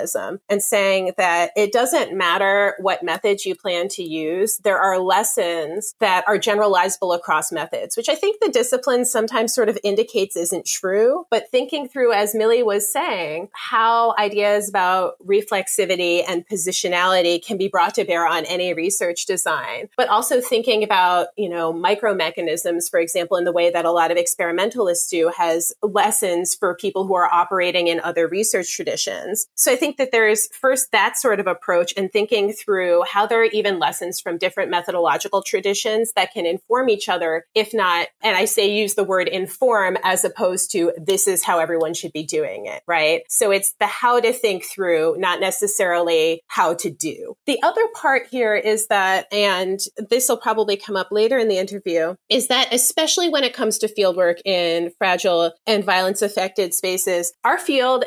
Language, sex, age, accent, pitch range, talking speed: English, female, 30-49, American, 180-230 Hz, 180 wpm